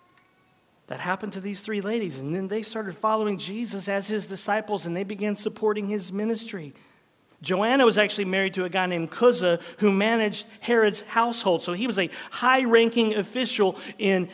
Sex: male